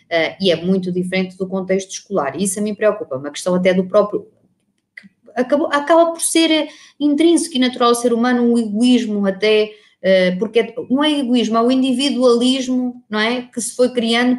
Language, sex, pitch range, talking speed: Portuguese, female, 170-220 Hz, 190 wpm